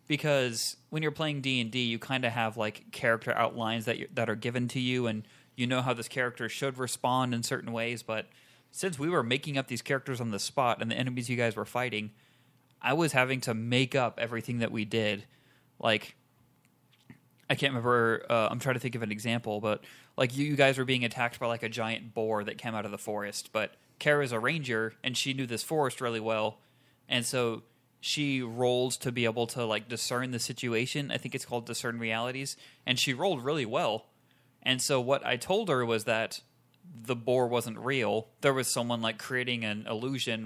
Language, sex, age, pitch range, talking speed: English, male, 20-39, 115-135 Hz, 215 wpm